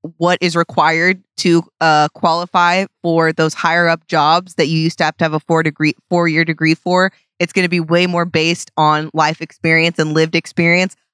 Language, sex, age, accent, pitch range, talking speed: English, female, 20-39, American, 160-185 Hz, 205 wpm